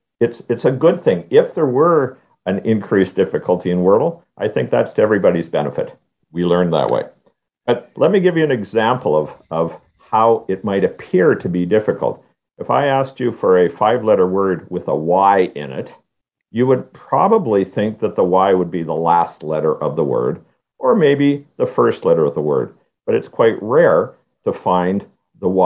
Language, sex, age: English, male, 50-69